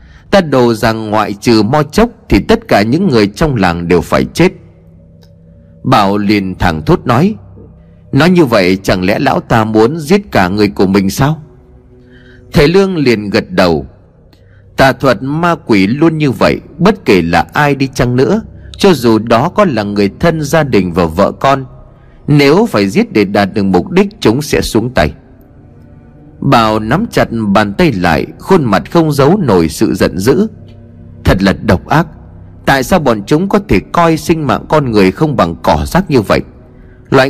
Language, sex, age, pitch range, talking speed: Vietnamese, male, 30-49, 100-155 Hz, 185 wpm